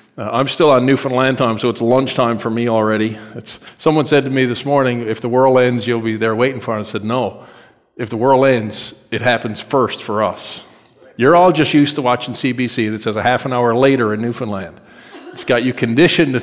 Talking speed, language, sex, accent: 225 wpm, English, male, American